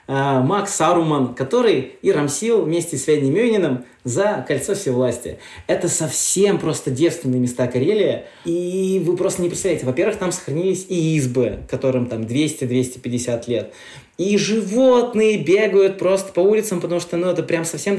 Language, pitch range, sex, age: Russian, 135-190 Hz, male, 20-39